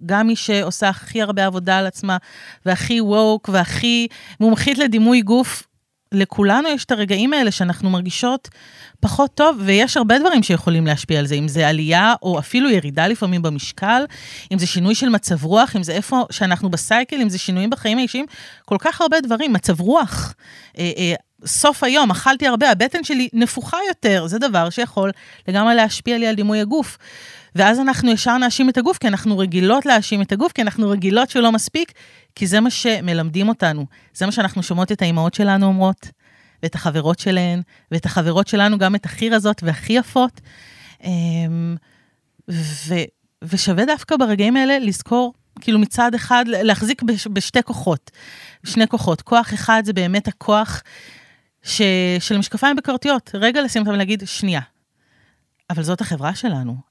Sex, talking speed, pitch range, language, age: female, 150 wpm, 180-240 Hz, Hebrew, 30-49